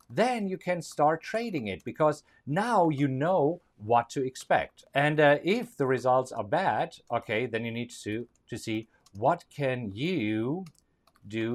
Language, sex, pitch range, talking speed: English, male, 130-180 Hz, 160 wpm